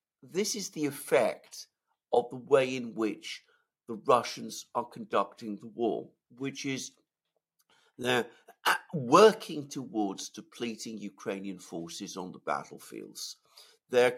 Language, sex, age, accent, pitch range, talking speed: English, male, 50-69, British, 110-170 Hz, 115 wpm